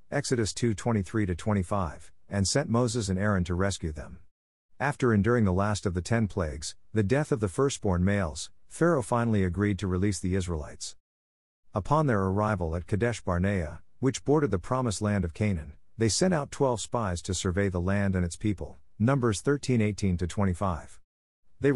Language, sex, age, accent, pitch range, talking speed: English, male, 50-69, American, 90-115 Hz, 170 wpm